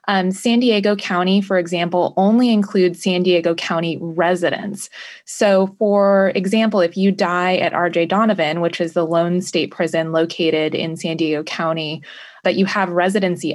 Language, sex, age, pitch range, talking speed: English, female, 20-39, 170-195 Hz, 160 wpm